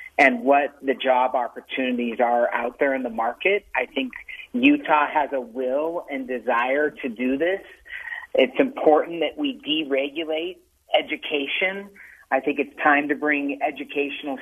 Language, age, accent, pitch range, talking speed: English, 40-59, American, 135-170 Hz, 145 wpm